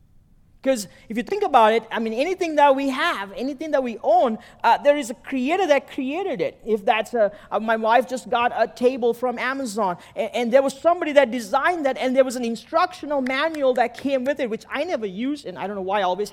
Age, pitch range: 40-59, 215-280 Hz